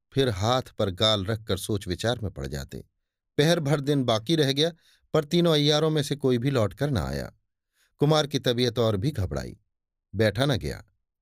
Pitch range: 100-145 Hz